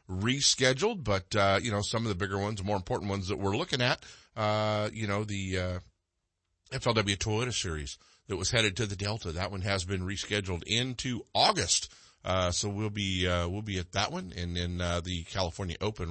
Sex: male